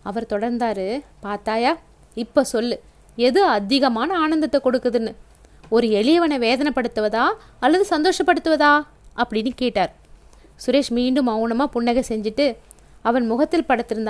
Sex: female